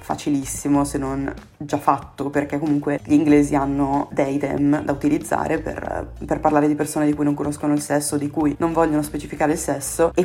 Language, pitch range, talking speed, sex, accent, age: Italian, 145-160 Hz, 195 wpm, female, native, 20-39